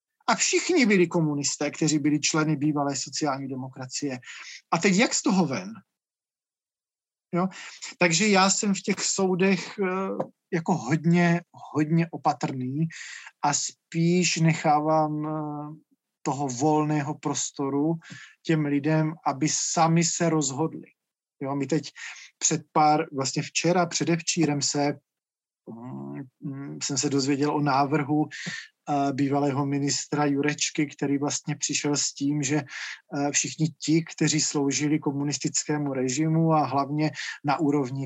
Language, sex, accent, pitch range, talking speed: Czech, male, native, 145-180 Hz, 110 wpm